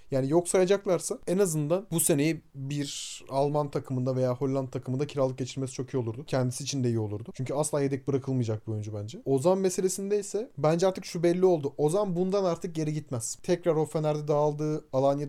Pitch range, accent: 140-185 Hz, Turkish